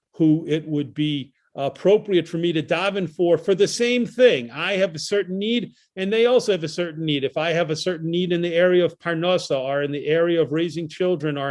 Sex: male